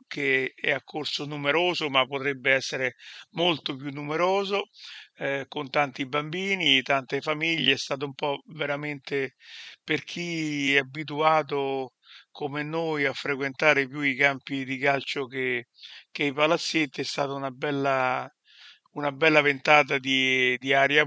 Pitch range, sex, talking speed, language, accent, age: 135-150 Hz, male, 140 wpm, Italian, native, 50-69